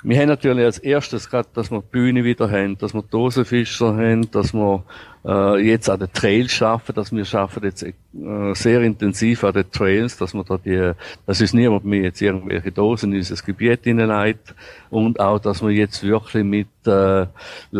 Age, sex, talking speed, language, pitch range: 50-69, male, 190 wpm, German, 95-115 Hz